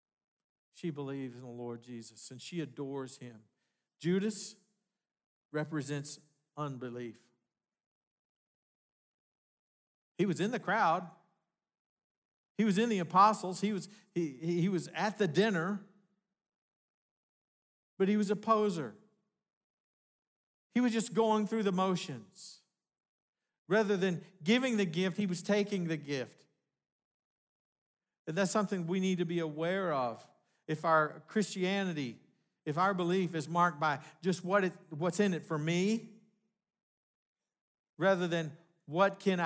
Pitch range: 145-200 Hz